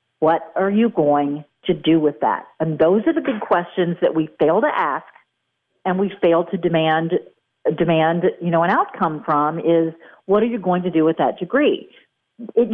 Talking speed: 195 wpm